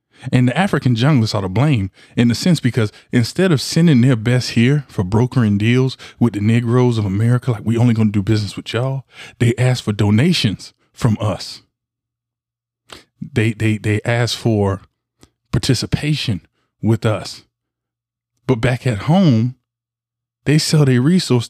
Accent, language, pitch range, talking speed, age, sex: American, English, 110-130 Hz, 155 wpm, 20-39, male